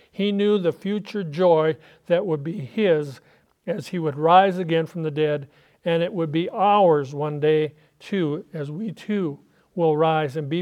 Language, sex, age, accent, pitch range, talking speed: English, male, 50-69, American, 150-180 Hz, 180 wpm